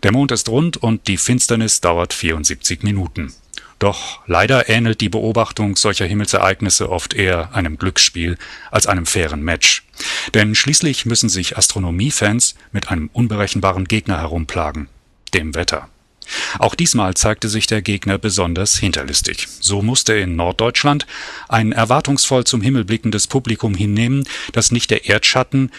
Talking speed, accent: 140 wpm, German